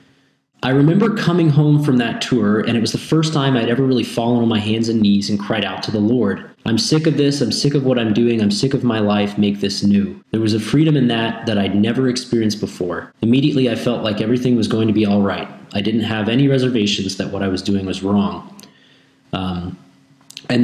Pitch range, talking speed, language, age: 105-135 Hz, 240 wpm, English, 20-39